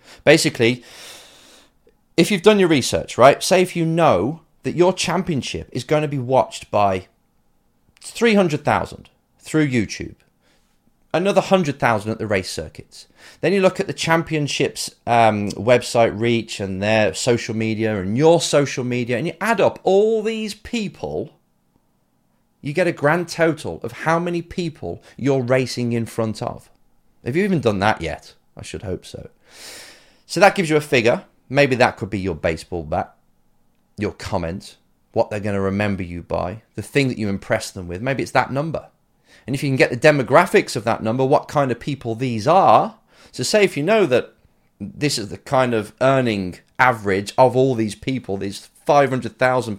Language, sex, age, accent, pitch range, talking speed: English, male, 30-49, British, 110-155 Hz, 175 wpm